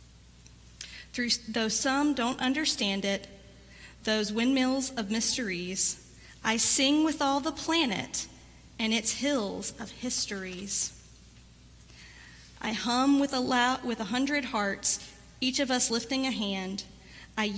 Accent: American